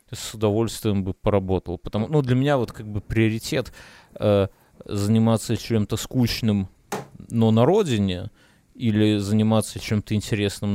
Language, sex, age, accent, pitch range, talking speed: Russian, male, 30-49, native, 105-125 Hz, 130 wpm